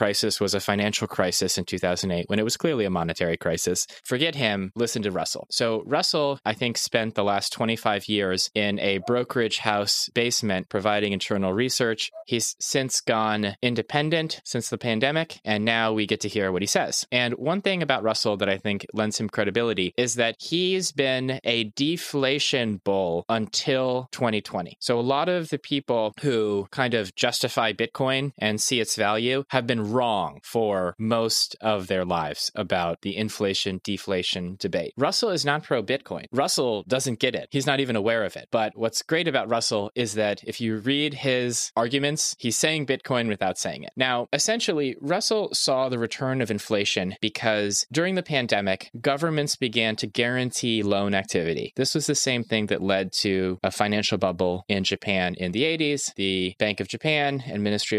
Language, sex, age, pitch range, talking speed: English, male, 20-39, 100-130 Hz, 180 wpm